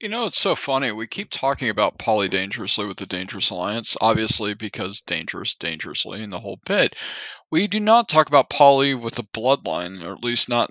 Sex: male